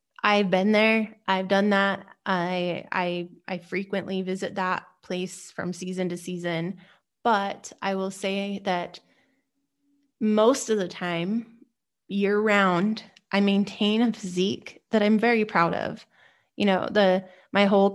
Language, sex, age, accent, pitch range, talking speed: English, female, 20-39, American, 185-210 Hz, 140 wpm